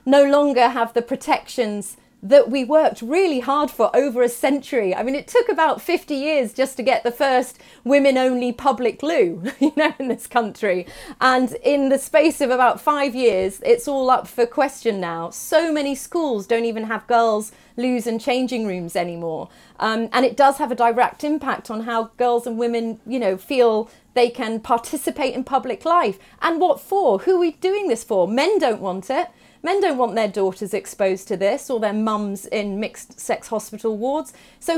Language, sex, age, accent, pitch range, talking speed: English, female, 30-49, British, 220-280 Hz, 190 wpm